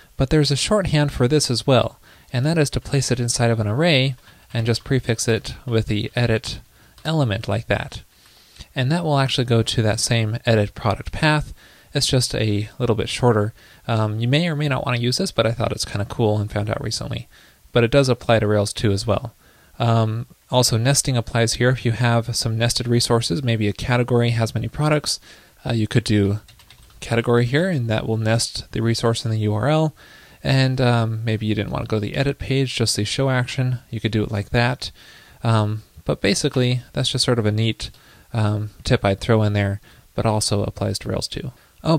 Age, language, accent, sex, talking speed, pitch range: 20-39, English, American, male, 215 wpm, 110-130 Hz